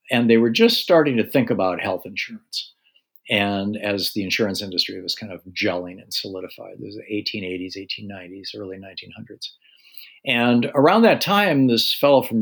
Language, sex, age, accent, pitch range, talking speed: English, male, 50-69, American, 95-115 Hz, 170 wpm